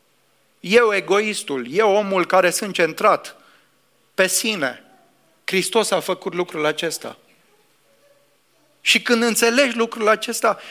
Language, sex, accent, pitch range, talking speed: English, male, Romanian, 150-220 Hz, 105 wpm